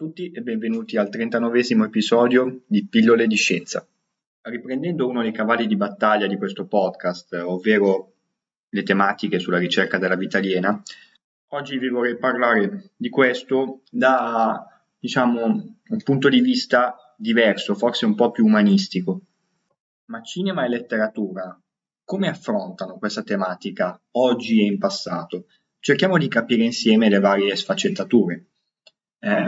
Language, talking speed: Italian, 135 wpm